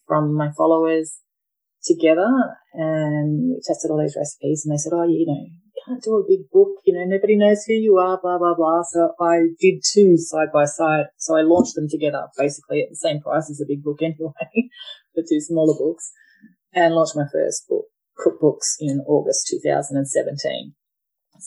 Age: 30-49